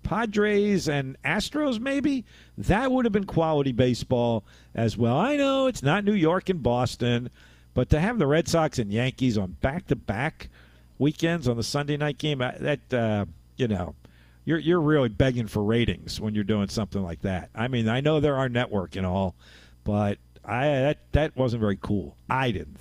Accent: American